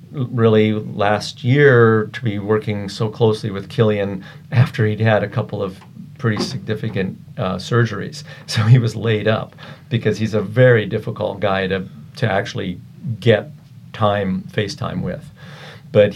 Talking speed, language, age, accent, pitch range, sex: 150 wpm, English, 50-69, American, 100-130 Hz, male